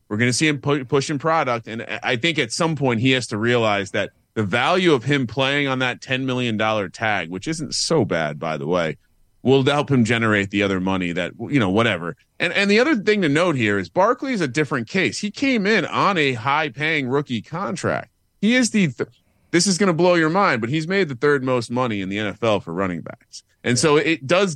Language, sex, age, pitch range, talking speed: English, male, 30-49, 110-150 Hz, 235 wpm